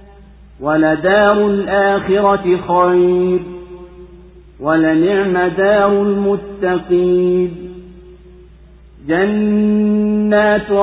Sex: male